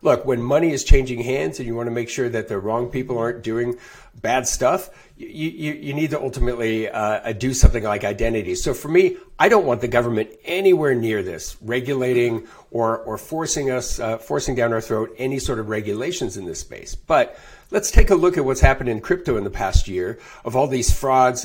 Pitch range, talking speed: 115-140 Hz, 215 wpm